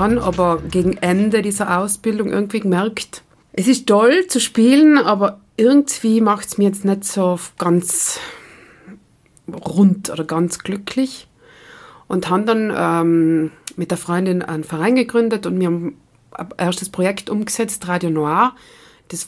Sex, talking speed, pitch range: female, 140 wpm, 170-205 Hz